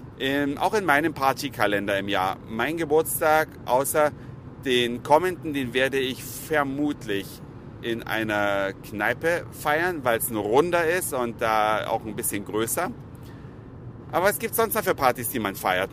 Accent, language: German, German